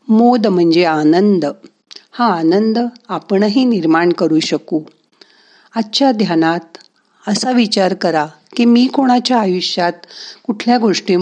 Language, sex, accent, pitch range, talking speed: Marathi, female, native, 165-225 Hz, 100 wpm